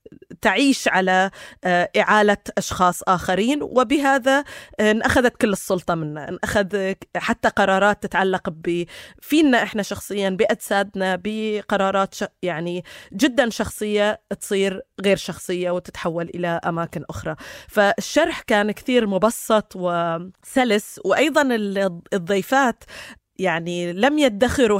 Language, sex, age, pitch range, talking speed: Arabic, female, 20-39, 180-225 Hz, 100 wpm